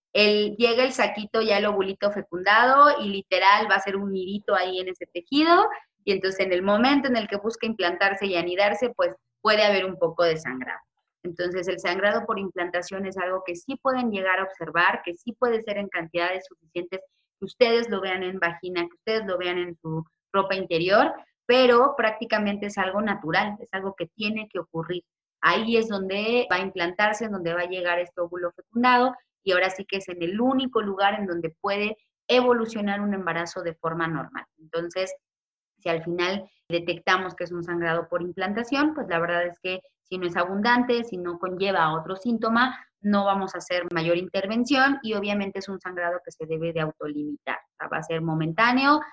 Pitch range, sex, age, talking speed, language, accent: 175-215 Hz, female, 30-49, 195 wpm, Spanish, Mexican